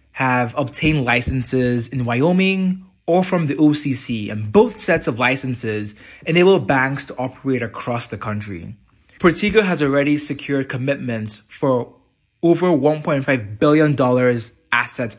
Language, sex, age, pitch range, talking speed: English, male, 20-39, 115-150 Hz, 125 wpm